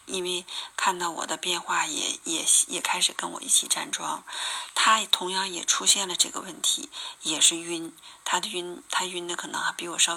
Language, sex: Chinese, female